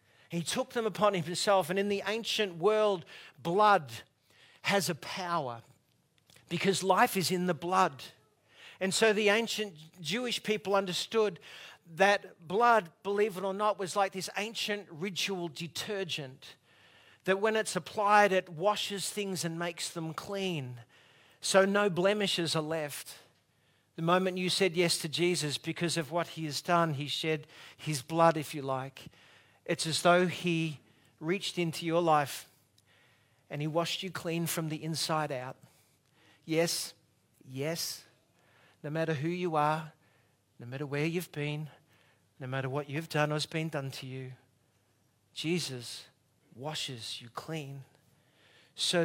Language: English